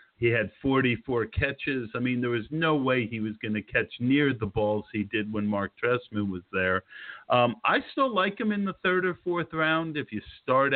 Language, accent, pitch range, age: English, American, 110-150 Hz, 50-69